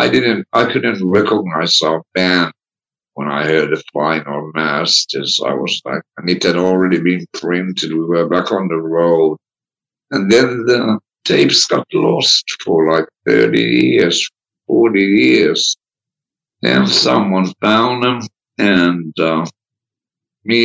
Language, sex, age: English, male, 60-79